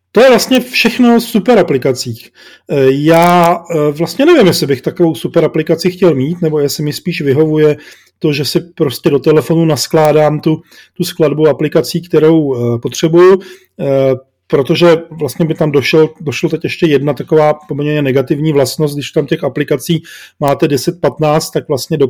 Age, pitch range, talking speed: 40-59, 140-165 Hz, 150 wpm